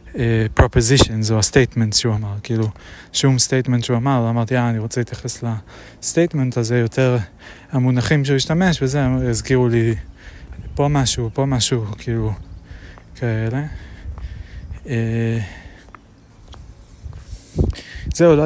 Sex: male